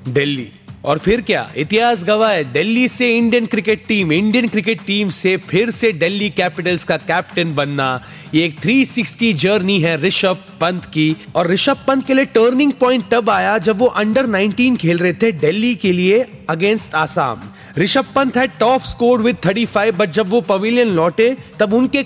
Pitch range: 180-235 Hz